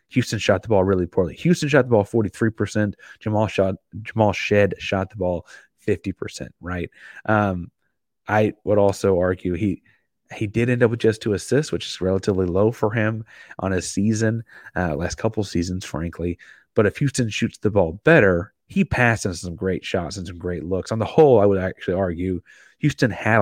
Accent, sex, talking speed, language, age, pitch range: American, male, 185 wpm, English, 30-49, 90-105 Hz